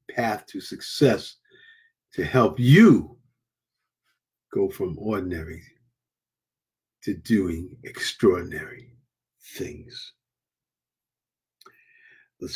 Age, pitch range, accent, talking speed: 50-69, 100-140 Hz, American, 65 wpm